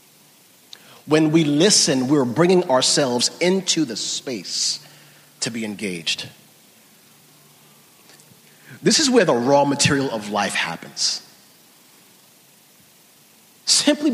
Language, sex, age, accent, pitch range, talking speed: English, male, 40-59, American, 145-225 Hz, 95 wpm